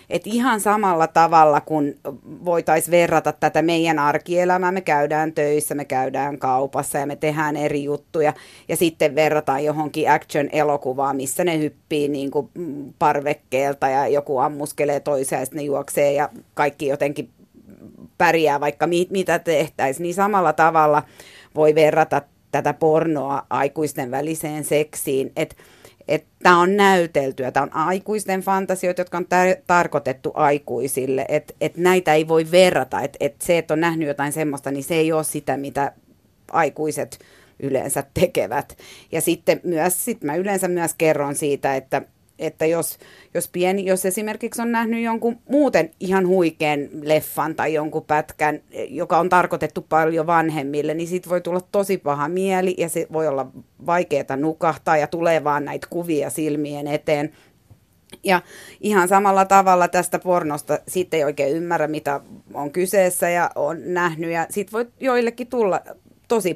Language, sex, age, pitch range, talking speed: Finnish, female, 30-49, 145-180 Hz, 150 wpm